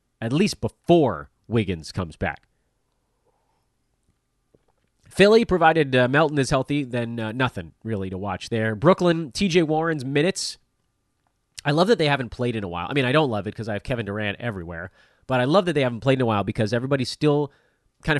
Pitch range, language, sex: 110-160 Hz, English, male